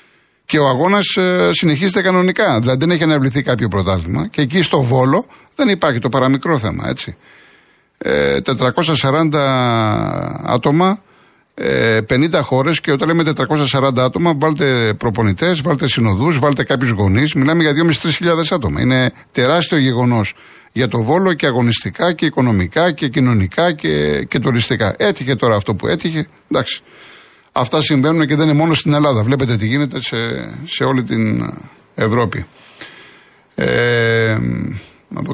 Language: Greek